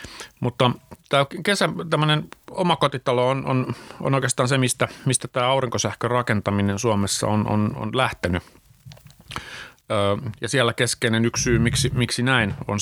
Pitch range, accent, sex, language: 105-135 Hz, native, male, Finnish